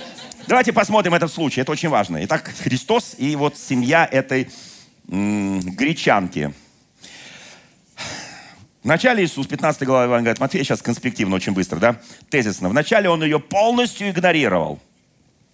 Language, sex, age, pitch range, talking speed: Russian, male, 40-59, 145-200 Hz, 125 wpm